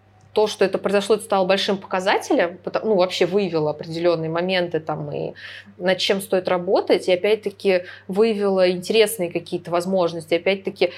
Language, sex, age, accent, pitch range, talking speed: Russian, female, 20-39, native, 170-195 Hz, 140 wpm